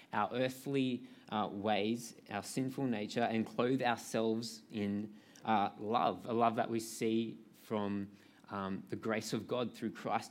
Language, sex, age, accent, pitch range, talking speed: English, male, 20-39, Australian, 105-125 Hz, 150 wpm